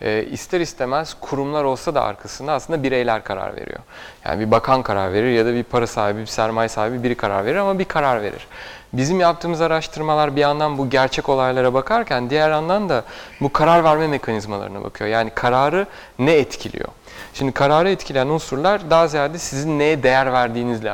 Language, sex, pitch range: Turkish, male, 115-150 Hz